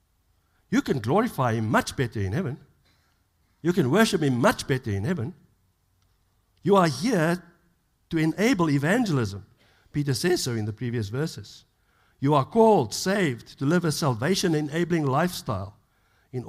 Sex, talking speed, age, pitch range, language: male, 140 wpm, 60-79, 105-140 Hz, English